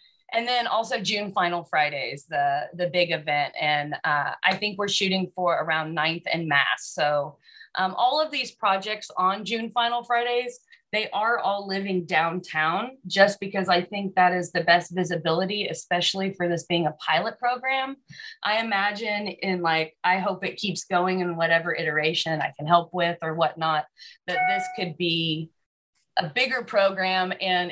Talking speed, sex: 170 wpm, female